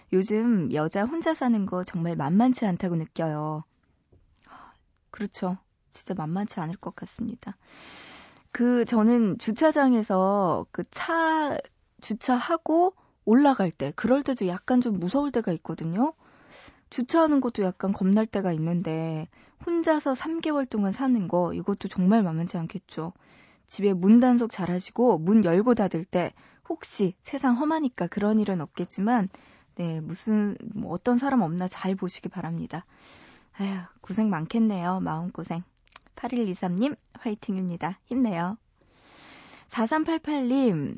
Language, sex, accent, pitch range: Korean, female, native, 180-245 Hz